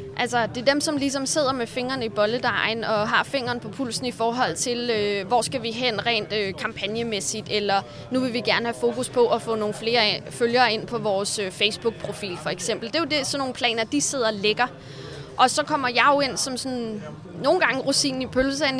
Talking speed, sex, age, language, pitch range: 225 wpm, female, 20-39, Danish, 210-255 Hz